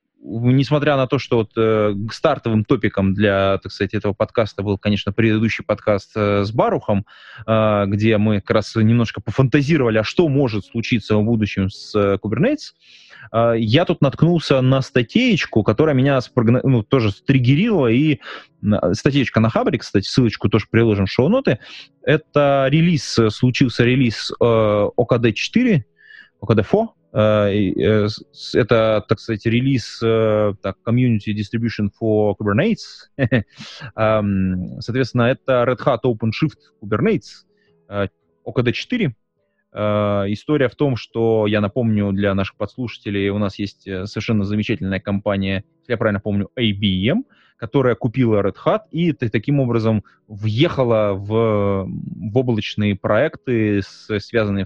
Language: Russian